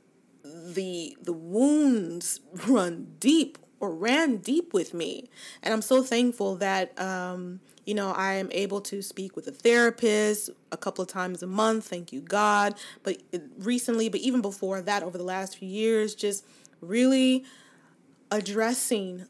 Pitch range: 190-235 Hz